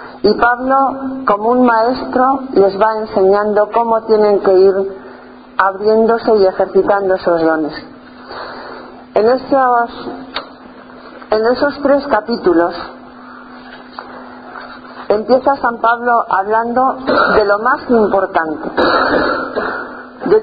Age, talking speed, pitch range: 40-59, 95 wpm, 200-250 Hz